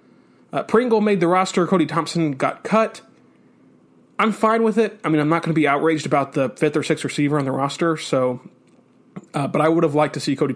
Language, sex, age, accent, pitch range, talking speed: English, male, 20-39, American, 140-170 Hz, 225 wpm